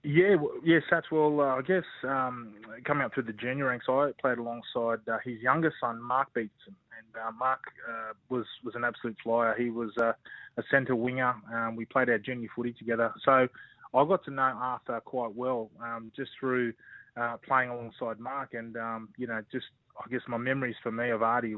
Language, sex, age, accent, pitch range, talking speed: English, male, 20-39, Australian, 115-130 Hz, 210 wpm